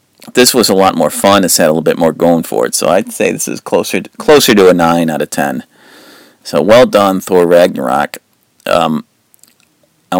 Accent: American